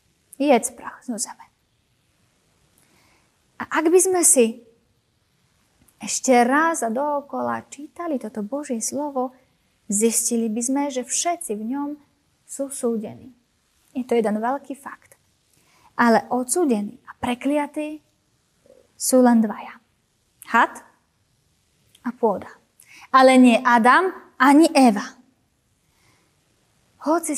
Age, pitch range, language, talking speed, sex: 20-39, 230-275 Hz, Slovak, 105 wpm, female